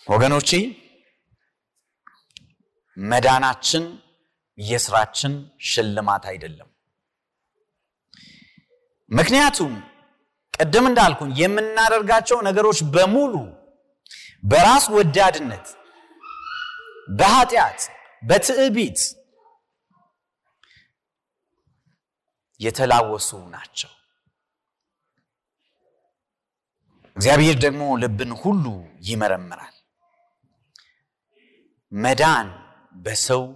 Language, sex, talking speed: Amharic, male, 45 wpm